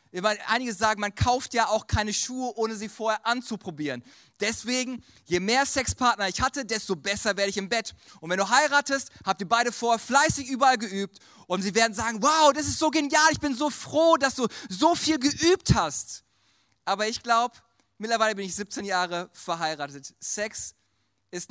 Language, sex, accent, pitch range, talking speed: German, male, German, 175-230 Hz, 180 wpm